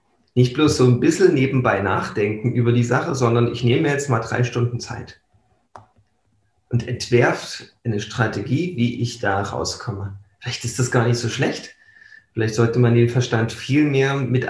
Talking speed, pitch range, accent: 170 wpm, 115-130 Hz, German